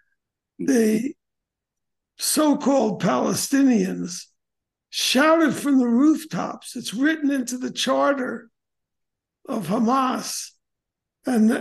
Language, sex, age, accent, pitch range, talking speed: English, male, 60-79, American, 220-270 Hz, 80 wpm